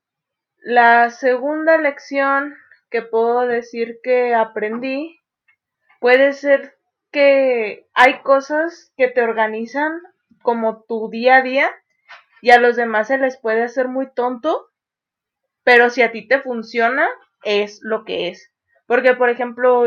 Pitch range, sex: 220-260 Hz, female